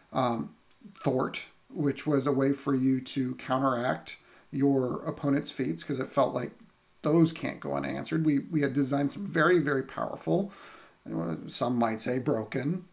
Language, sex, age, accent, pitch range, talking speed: English, male, 40-59, American, 130-155 Hz, 155 wpm